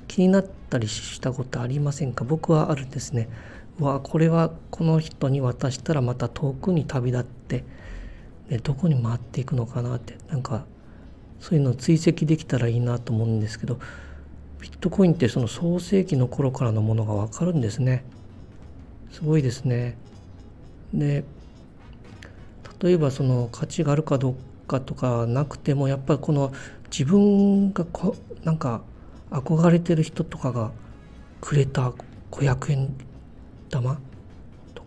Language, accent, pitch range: Japanese, native, 115-155 Hz